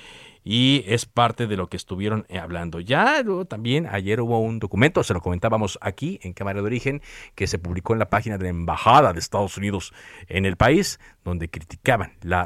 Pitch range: 90-120 Hz